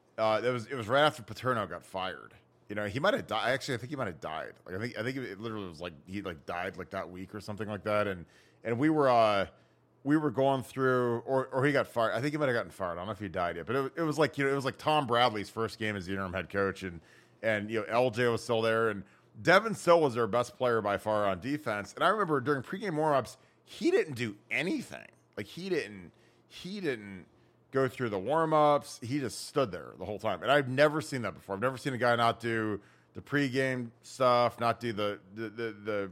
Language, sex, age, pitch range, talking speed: English, male, 30-49, 105-130 Hz, 260 wpm